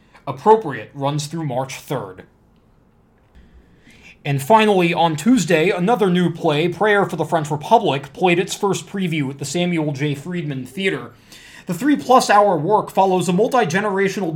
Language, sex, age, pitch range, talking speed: English, male, 20-39, 150-190 Hz, 145 wpm